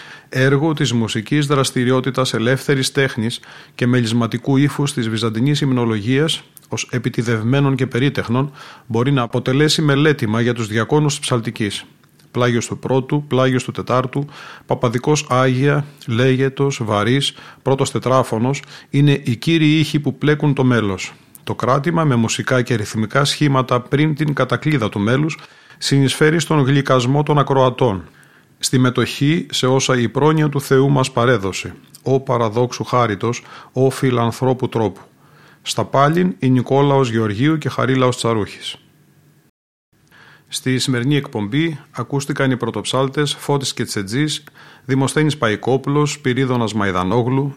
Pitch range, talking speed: 120-140 Hz, 125 wpm